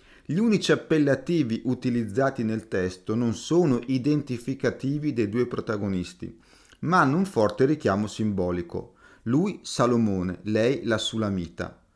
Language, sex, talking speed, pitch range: Italian, male, 115 wpm, 100-140 Hz